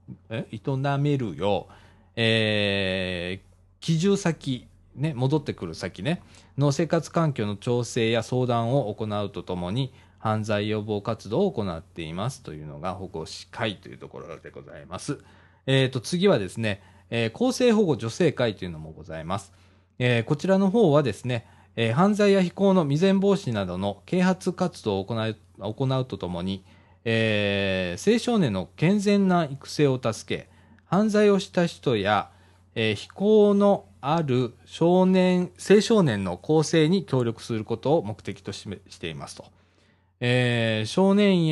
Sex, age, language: male, 20-39, Japanese